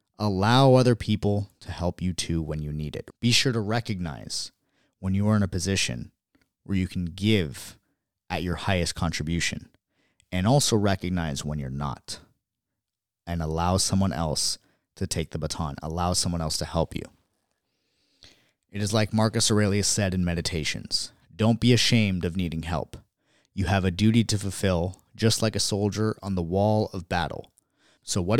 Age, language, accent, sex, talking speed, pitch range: 30-49, English, American, male, 170 wpm, 80-105 Hz